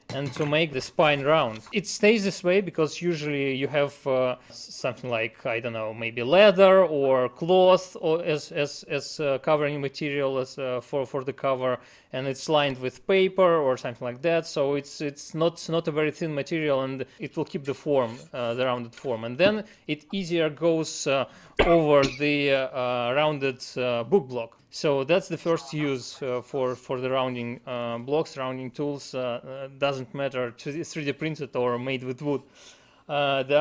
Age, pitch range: 20-39, 130-160 Hz